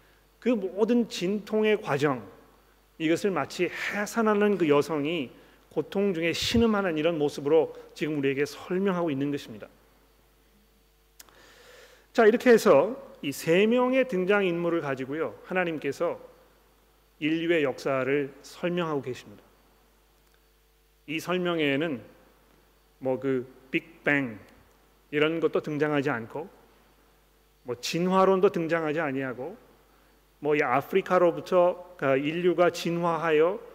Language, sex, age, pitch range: Korean, male, 40-59, 150-205 Hz